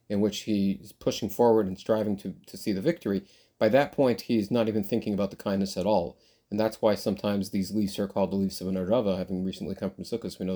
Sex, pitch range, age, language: male, 95-115 Hz, 30-49, English